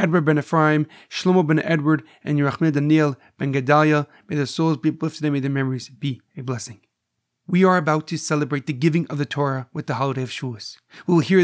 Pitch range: 145-175 Hz